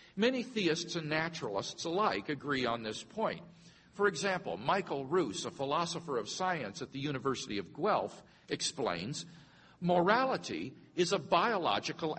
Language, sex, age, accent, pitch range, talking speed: English, male, 50-69, American, 140-185 Hz, 135 wpm